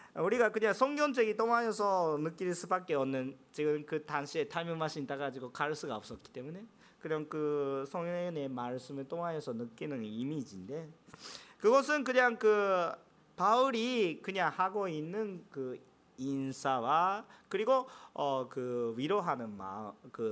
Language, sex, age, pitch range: Korean, male, 40-59, 140-230 Hz